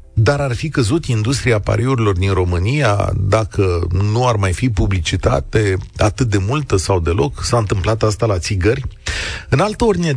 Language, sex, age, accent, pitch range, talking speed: Romanian, male, 40-59, native, 100-135 Hz, 160 wpm